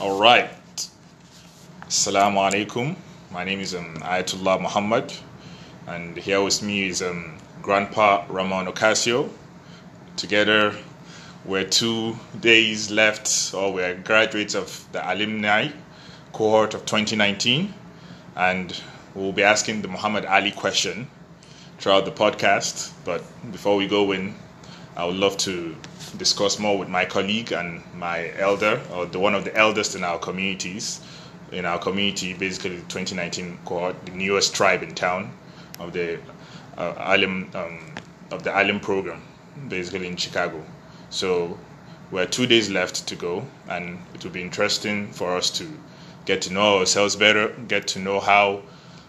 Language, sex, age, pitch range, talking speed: English, male, 20-39, 95-110 Hz, 140 wpm